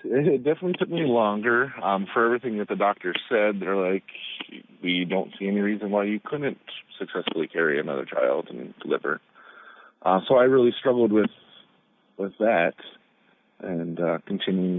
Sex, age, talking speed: male, 40-59, 160 wpm